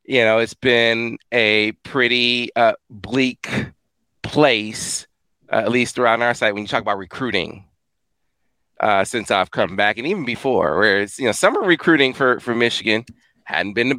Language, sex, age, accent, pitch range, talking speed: English, male, 30-49, American, 95-115 Hz, 170 wpm